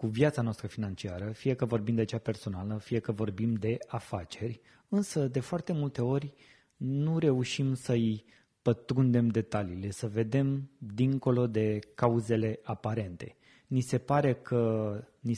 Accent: native